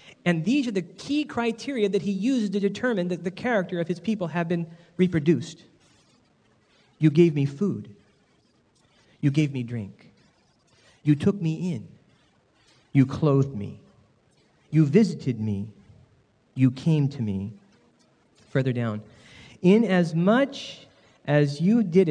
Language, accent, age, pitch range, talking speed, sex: English, American, 40-59, 135-190 Hz, 130 wpm, male